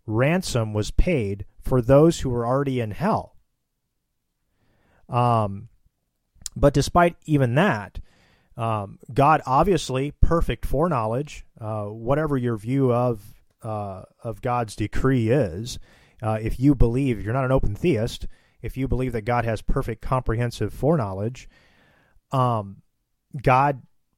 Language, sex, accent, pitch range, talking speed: English, male, American, 105-130 Hz, 125 wpm